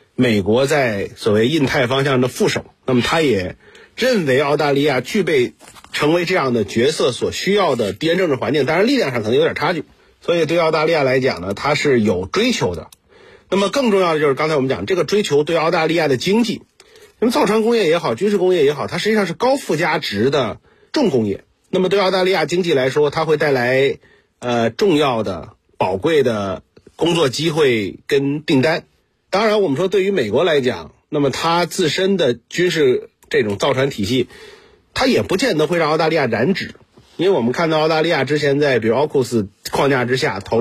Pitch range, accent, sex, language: 135-195 Hz, native, male, Chinese